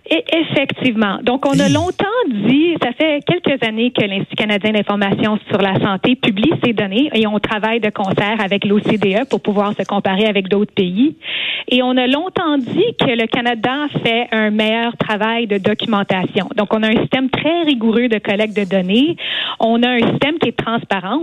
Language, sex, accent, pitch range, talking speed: French, female, Canadian, 210-255 Hz, 185 wpm